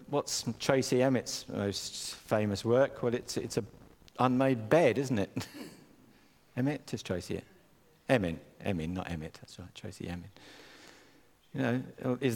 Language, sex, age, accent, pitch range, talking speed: English, male, 50-69, British, 100-130 Hz, 135 wpm